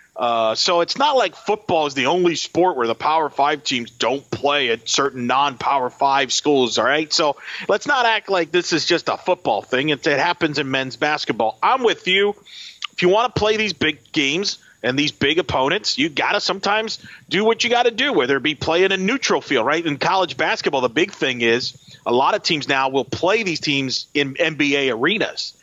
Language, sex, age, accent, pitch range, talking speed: English, male, 40-59, American, 140-200 Hz, 220 wpm